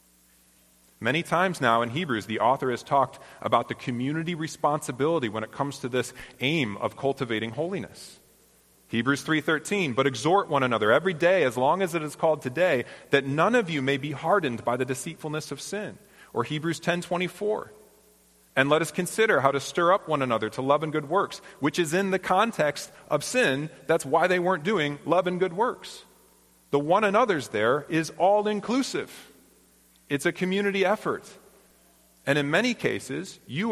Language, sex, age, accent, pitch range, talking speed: English, male, 30-49, American, 110-170 Hz, 175 wpm